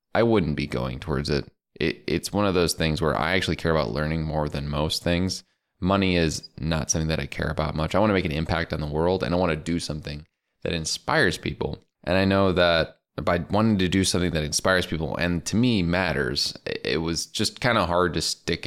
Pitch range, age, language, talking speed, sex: 75-90 Hz, 20-39, English, 235 wpm, male